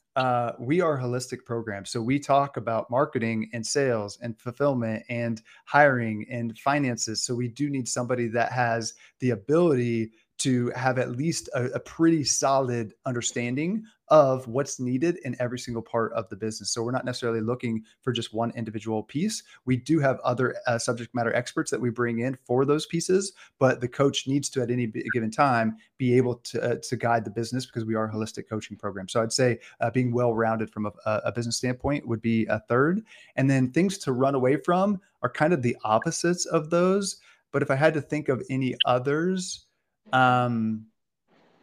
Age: 30-49